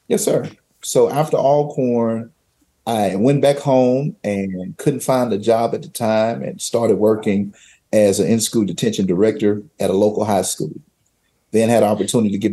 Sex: male